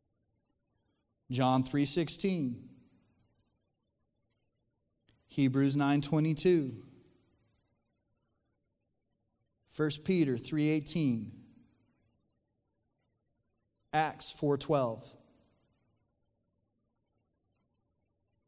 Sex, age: male, 30-49